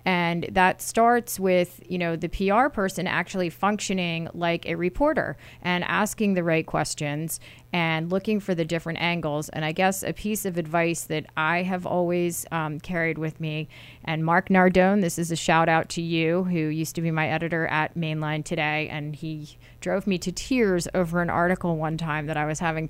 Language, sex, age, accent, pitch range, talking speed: English, female, 30-49, American, 155-190 Hz, 195 wpm